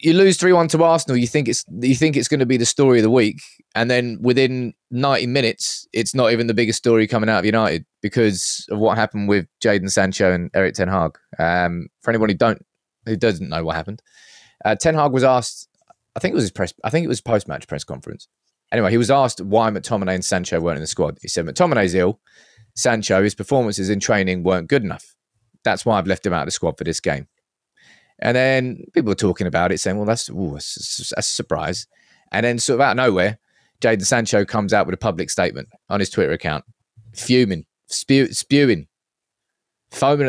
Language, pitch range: English, 105-130 Hz